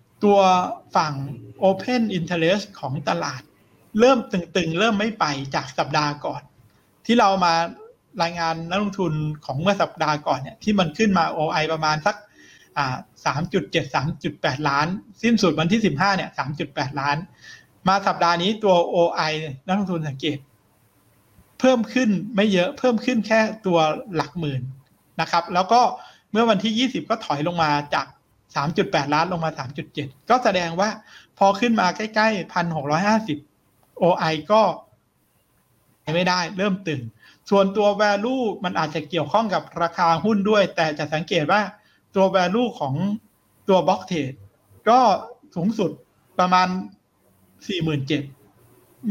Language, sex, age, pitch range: Thai, male, 60-79, 150-205 Hz